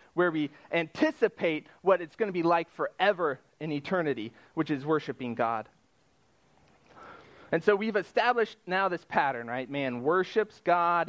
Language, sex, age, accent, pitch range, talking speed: English, male, 30-49, American, 150-190 Hz, 145 wpm